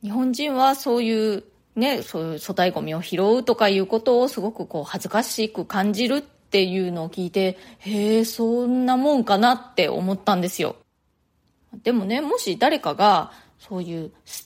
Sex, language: female, Japanese